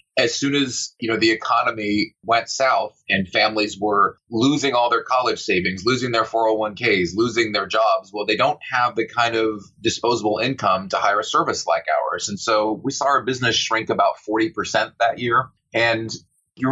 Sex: male